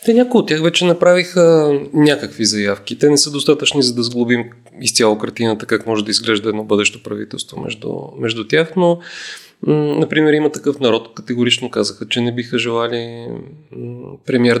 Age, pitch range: 30-49, 115-145 Hz